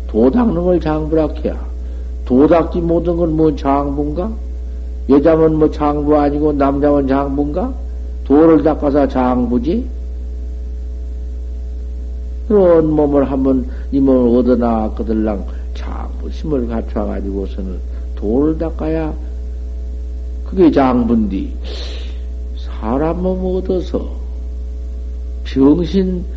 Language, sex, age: Korean, male, 60-79